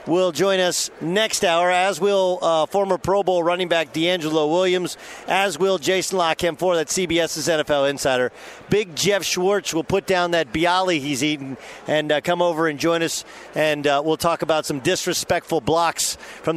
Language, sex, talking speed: English, male, 180 wpm